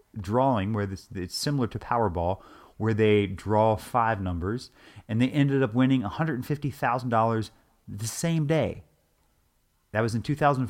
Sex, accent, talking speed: male, American, 170 wpm